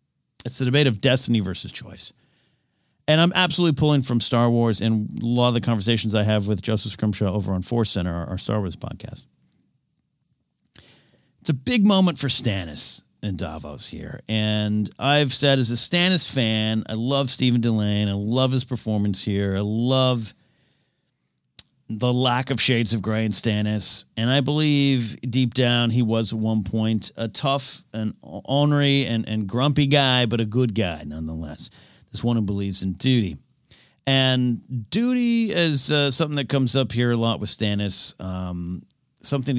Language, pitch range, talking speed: English, 105-130 Hz, 170 wpm